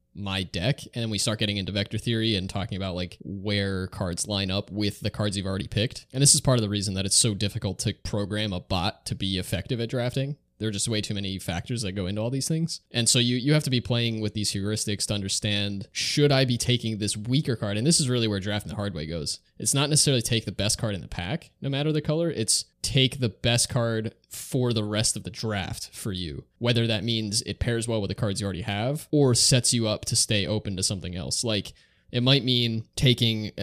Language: English